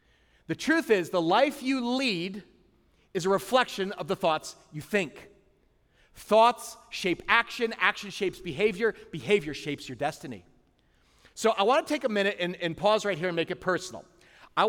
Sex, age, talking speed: male, 40-59, 170 wpm